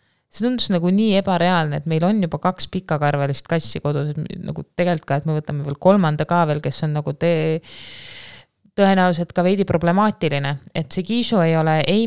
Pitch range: 155-185 Hz